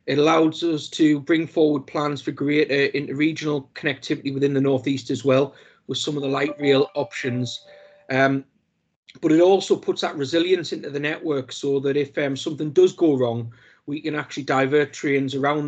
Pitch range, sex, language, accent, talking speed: 135-155 Hz, male, English, British, 185 wpm